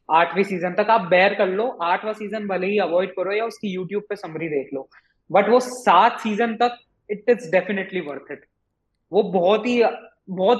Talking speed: 140 wpm